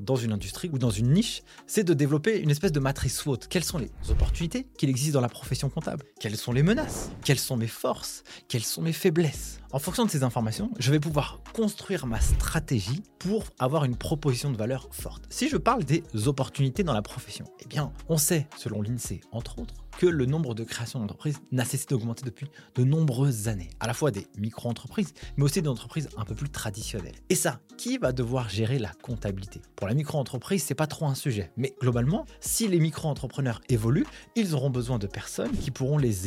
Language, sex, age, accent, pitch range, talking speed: French, male, 20-39, French, 115-155 Hz, 210 wpm